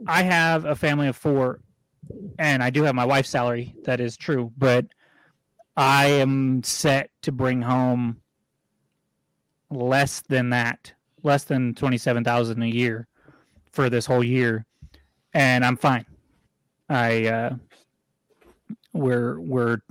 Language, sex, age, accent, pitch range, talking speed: English, male, 30-49, American, 120-150 Hz, 135 wpm